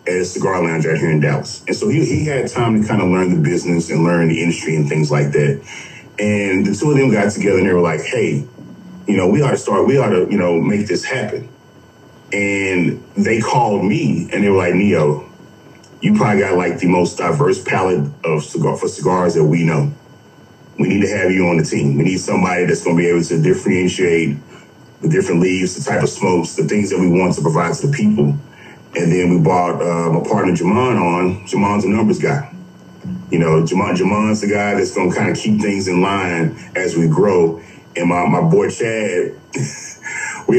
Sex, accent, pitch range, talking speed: male, American, 85-105 Hz, 220 wpm